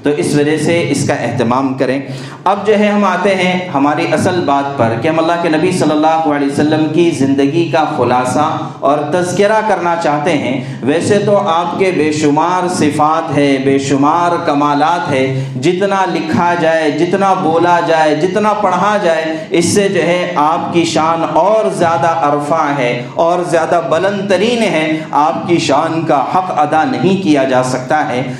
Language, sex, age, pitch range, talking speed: Urdu, male, 50-69, 145-185 Hz, 175 wpm